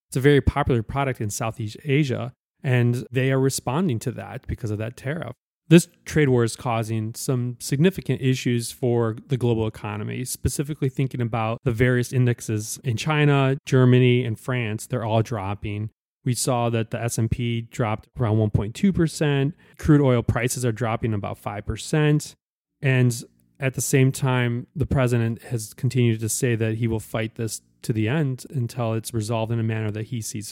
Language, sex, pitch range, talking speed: English, male, 115-135 Hz, 170 wpm